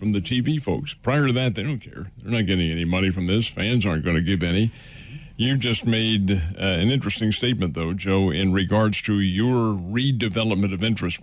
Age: 50-69